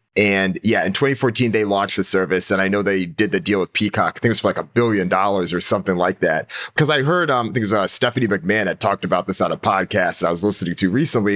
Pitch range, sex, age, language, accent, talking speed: 95-115 Hz, male, 30-49, English, American, 285 wpm